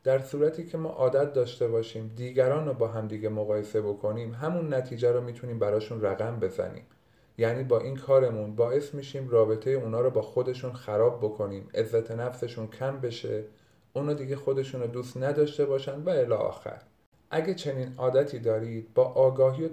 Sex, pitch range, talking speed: male, 115-140 Hz, 160 wpm